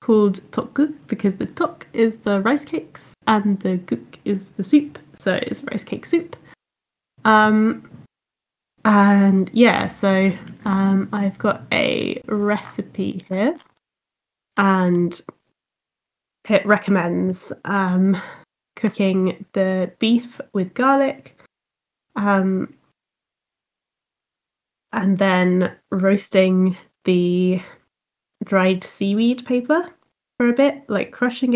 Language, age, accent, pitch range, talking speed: English, 20-39, British, 190-230 Hz, 100 wpm